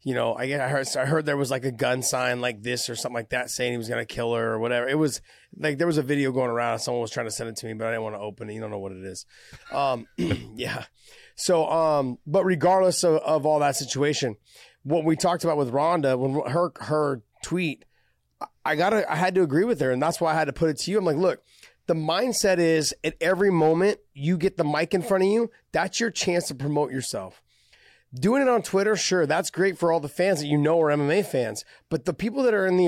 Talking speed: 265 wpm